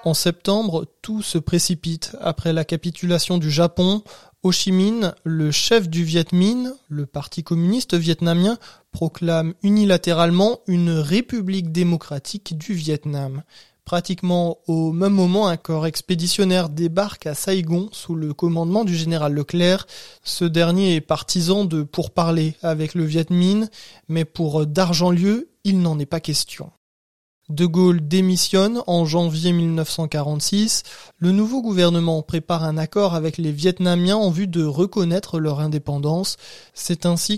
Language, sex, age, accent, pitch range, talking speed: French, male, 20-39, French, 160-185 Hz, 140 wpm